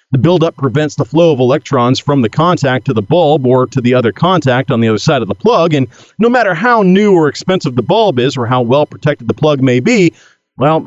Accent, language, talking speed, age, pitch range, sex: American, English, 235 wpm, 40-59, 130-185 Hz, male